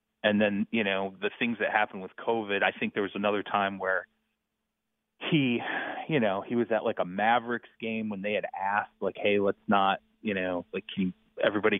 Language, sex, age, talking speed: English, male, 30-49, 205 wpm